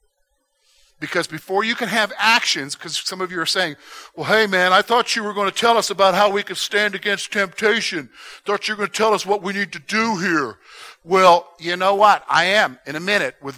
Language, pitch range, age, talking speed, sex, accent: English, 180-260 Hz, 50-69, 235 wpm, male, American